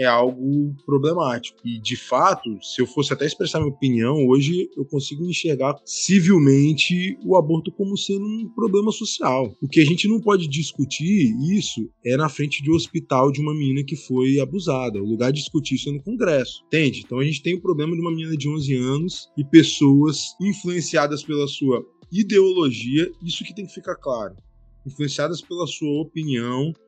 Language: Portuguese